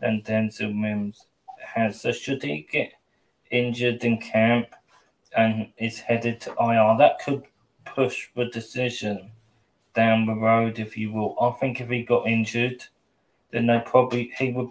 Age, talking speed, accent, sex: 20-39, 155 wpm, British, male